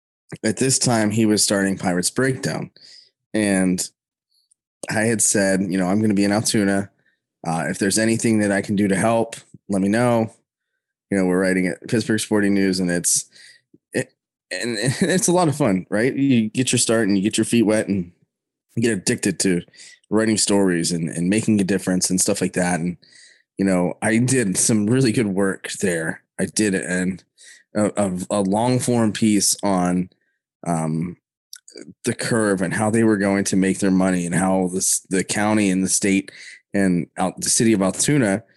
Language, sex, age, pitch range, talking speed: English, male, 20-39, 95-115 Hz, 190 wpm